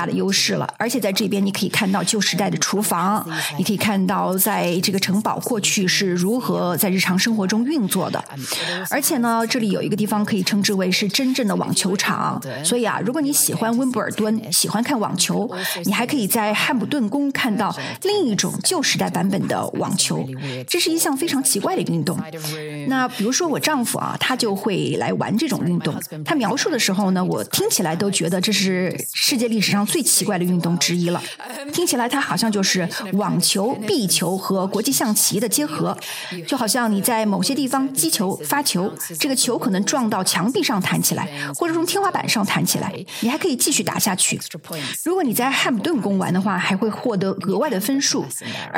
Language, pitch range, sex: Chinese, 185-245 Hz, female